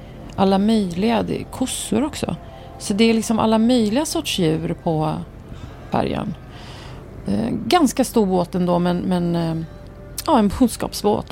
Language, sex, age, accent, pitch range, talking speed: Swedish, female, 30-49, native, 160-195 Hz, 140 wpm